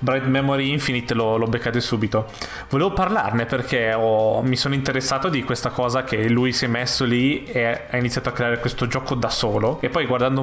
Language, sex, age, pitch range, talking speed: Italian, male, 20-39, 120-135 Hz, 195 wpm